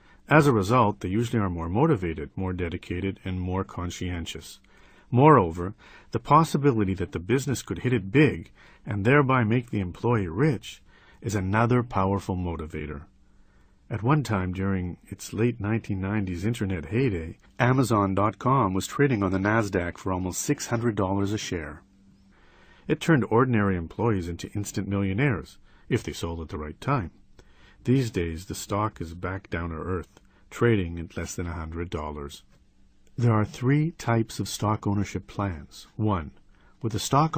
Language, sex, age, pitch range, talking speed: English, male, 50-69, 90-115 Hz, 150 wpm